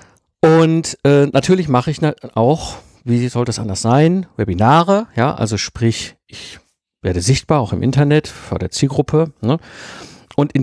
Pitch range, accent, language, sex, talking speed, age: 110-140 Hz, German, German, male, 150 wpm, 50-69